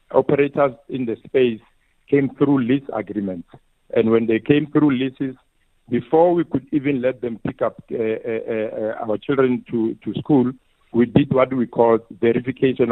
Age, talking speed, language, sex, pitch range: 50-69, 165 wpm, English, male, 115-145 Hz